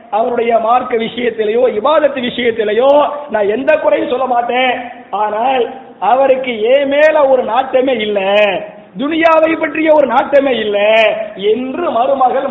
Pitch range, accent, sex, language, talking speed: 235-285 Hz, Indian, male, English, 85 wpm